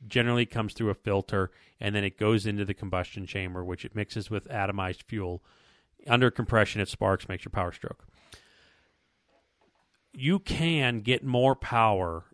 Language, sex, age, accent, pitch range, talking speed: English, male, 40-59, American, 100-125 Hz, 155 wpm